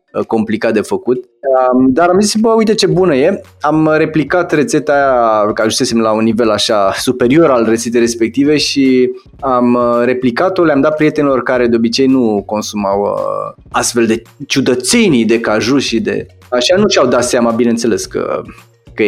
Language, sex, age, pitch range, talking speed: Romanian, male, 20-39, 115-165 Hz, 155 wpm